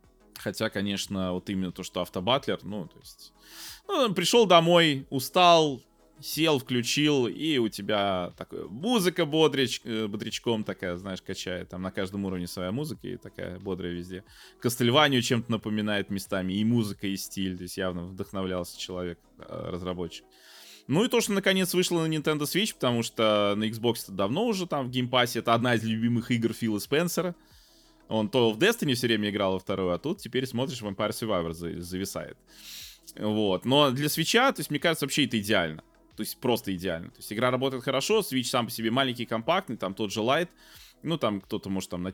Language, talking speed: Russian, 180 wpm